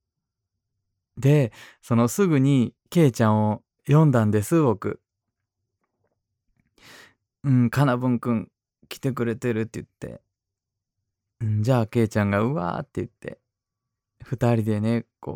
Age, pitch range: 20-39, 110-135 Hz